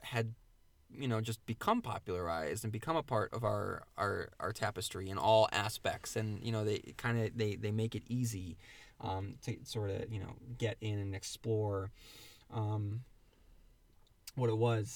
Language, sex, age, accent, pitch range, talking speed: English, male, 20-39, American, 100-125 Hz, 175 wpm